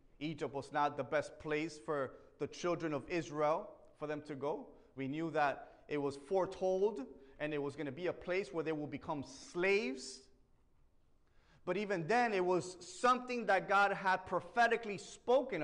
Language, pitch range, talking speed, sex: English, 150-215 Hz, 175 wpm, male